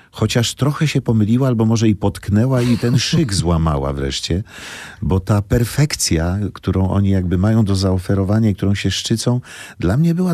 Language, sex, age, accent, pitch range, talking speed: Polish, male, 50-69, native, 80-115 Hz, 165 wpm